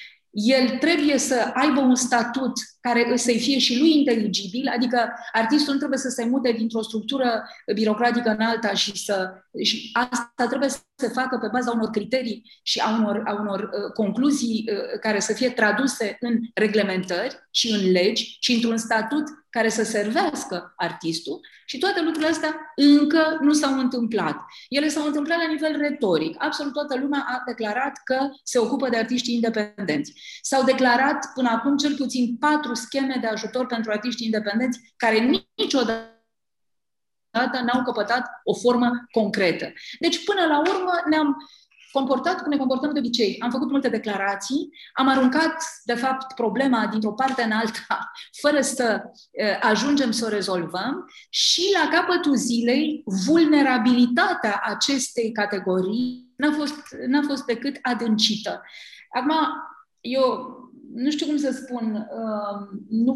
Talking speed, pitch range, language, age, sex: 150 wpm, 225-285 Hz, Romanian, 30-49, female